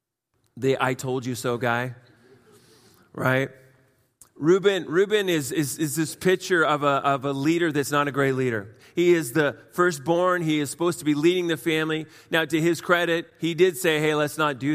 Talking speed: 185 wpm